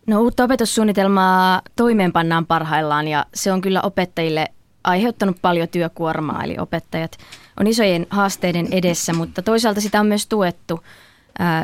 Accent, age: native, 20-39